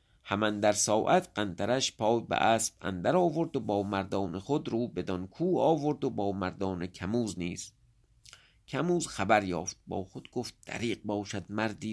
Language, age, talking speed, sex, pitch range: English, 50-69, 155 wpm, male, 100-140 Hz